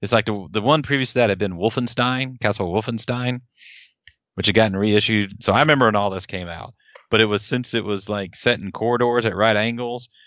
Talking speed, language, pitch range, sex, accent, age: 220 wpm, English, 95-110 Hz, male, American, 30-49